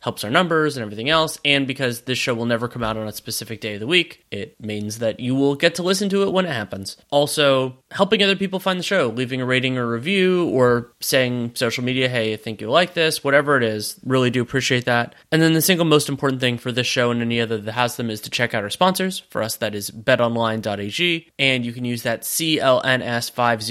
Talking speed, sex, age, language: 245 wpm, male, 30-49, English